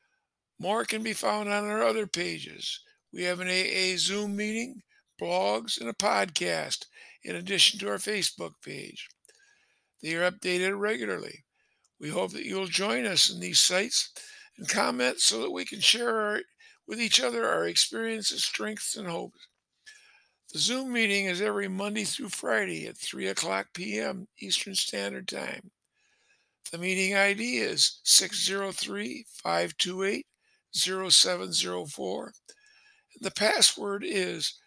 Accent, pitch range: American, 175-240 Hz